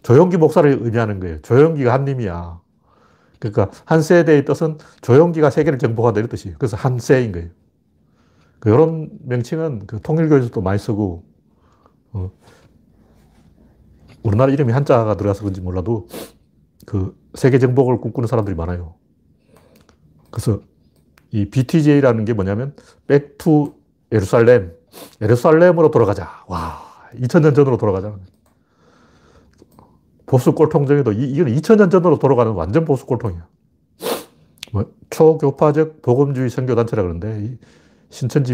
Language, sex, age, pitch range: Korean, male, 40-59, 100-145 Hz